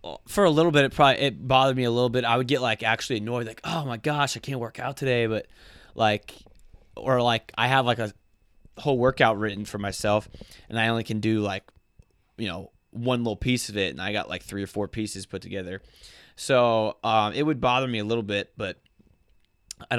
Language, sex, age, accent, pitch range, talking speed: English, male, 20-39, American, 100-120 Hz, 220 wpm